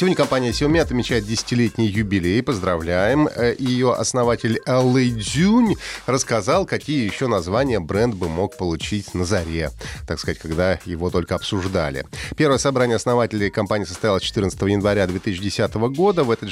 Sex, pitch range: male, 95-130 Hz